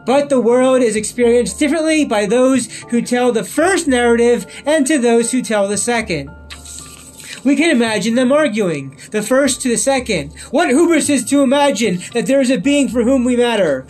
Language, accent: English, American